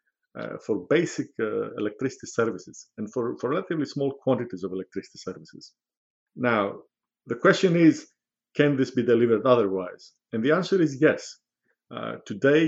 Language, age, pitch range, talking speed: English, 50-69, 105-145 Hz, 145 wpm